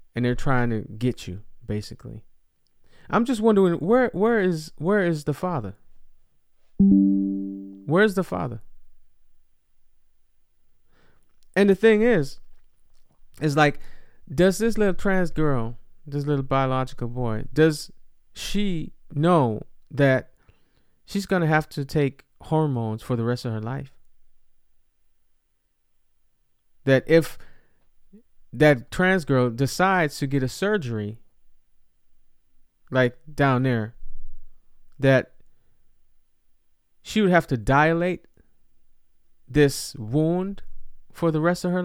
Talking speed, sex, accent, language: 110 wpm, male, American, English